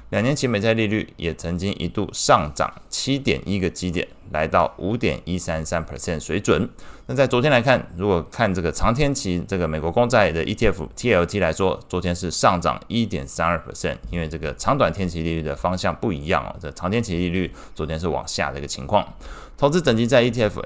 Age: 20-39